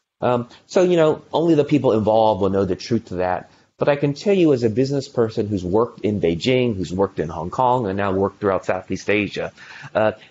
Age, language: 30-49, English